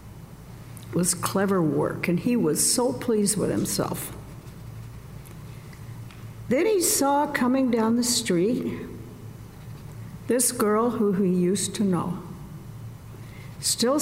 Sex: female